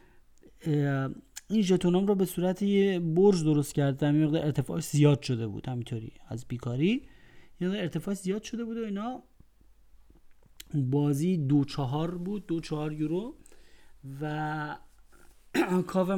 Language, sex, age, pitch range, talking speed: Persian, male, 40-59, 130-185 Hz, 120 wpm